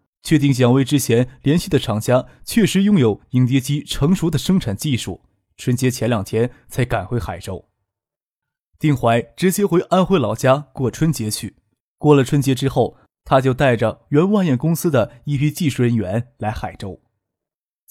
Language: Chinese